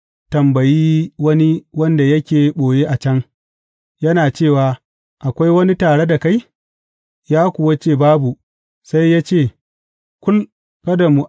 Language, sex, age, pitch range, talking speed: English, male, 40-59, 145-180 Hz, 100 wpm